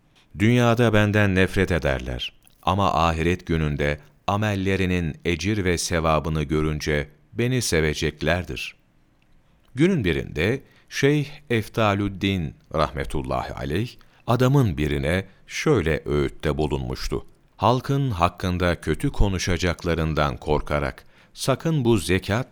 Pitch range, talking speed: 80-105 Hz, 90 wpm